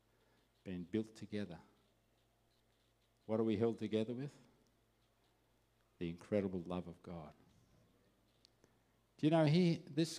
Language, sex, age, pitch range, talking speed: English, male, 50-69, 110-130 Hz, 110 wpm